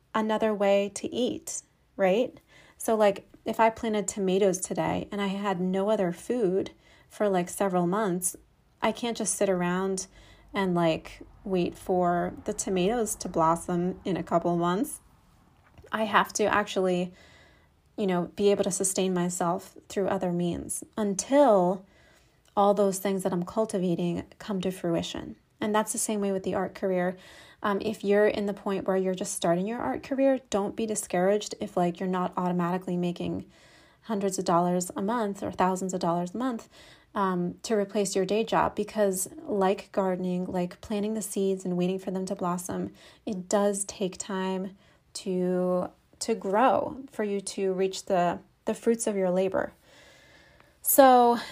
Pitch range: 180-210 Hz